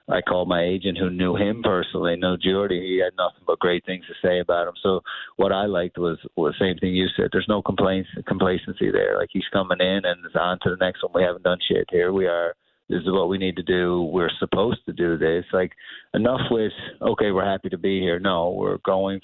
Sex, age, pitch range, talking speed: male, 30-49, 90-100 Hz, 235 wpm